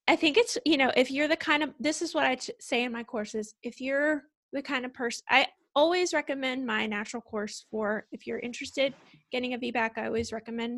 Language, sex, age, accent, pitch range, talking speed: English, female, 20-39, American, 220-280 Hz, 225 wpm